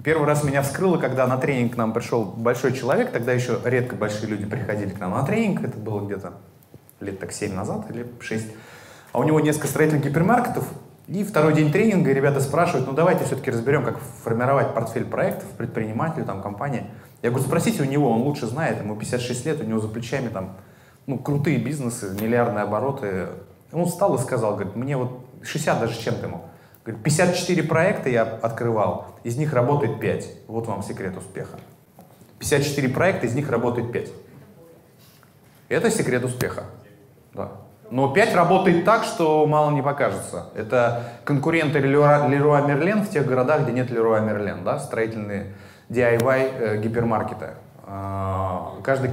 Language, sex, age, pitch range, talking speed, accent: Russian, male, 20-39, 110-145 Hz, 160 wpm, native